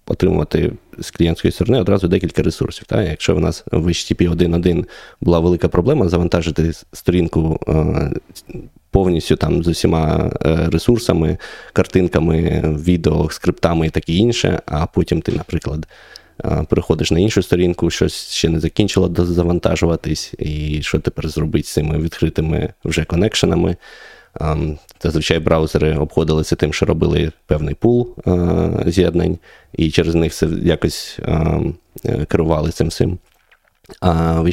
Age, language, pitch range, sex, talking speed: 20-39, Ukrainian, 80-90 Hz, male, 130 wpm